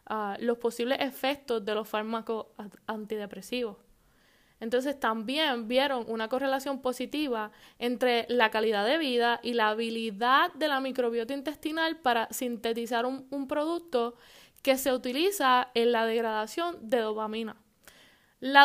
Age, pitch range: 10-29, 225-270 Hz